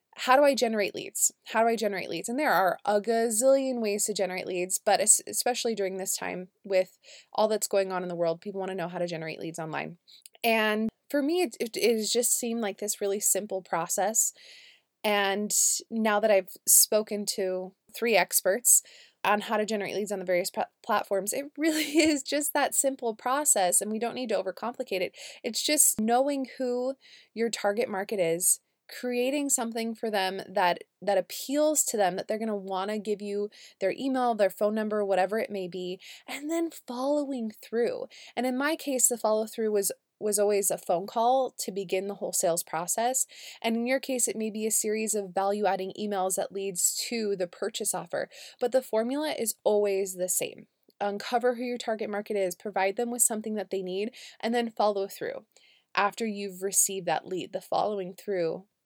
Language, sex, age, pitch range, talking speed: English, female, 20-39, 195-245 Hz, 195 wpm